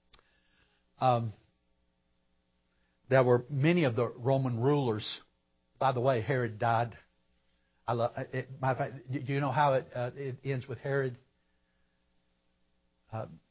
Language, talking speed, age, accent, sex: English, 105 wpm, 60-79, American, male